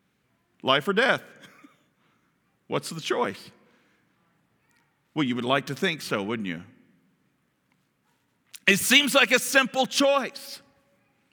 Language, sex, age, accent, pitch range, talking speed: English, male, 50-69, American, 180-245 Hz, 110 wpm